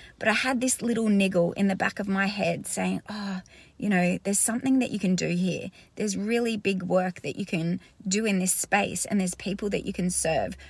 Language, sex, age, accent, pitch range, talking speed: English, female, 30-49, Australian, 180-215 Hz, 230 wpm